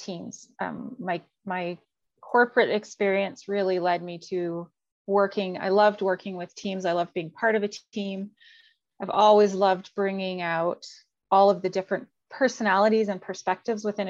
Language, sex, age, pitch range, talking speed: English, female, 30-49, 185-225 Hz, 155 wpm